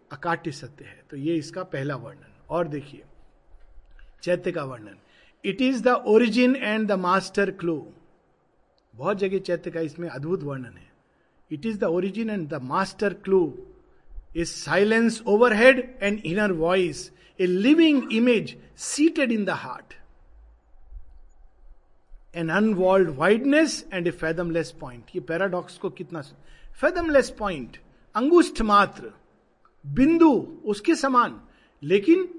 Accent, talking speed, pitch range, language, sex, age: native, 120 wpm, 165-245 Hz, Hindi, male, 50-69